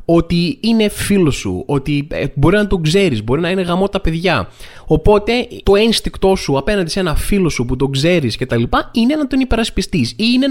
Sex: male